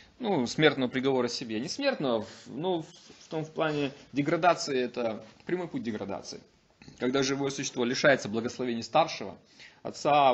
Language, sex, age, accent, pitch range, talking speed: Russian, male, 20-39, native, 125-170 Hz, 140 wpm